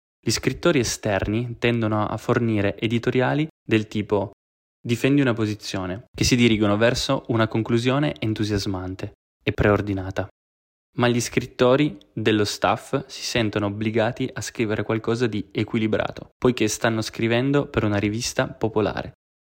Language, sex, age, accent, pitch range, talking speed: Italian, male, 20-39, native, 100-120 Hz, 125 wpm